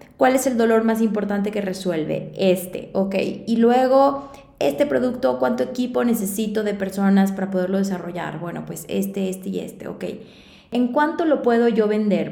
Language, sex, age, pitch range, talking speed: Spanish, female, 20-39, 185-220 Hz, 170 wpm